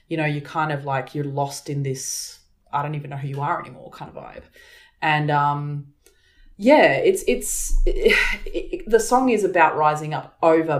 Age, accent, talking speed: 20-39, Australian, 185 wpm